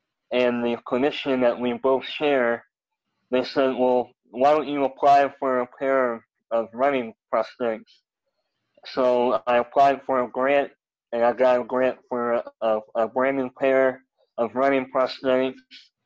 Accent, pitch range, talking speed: American, 120-135 Hz, 155 wpm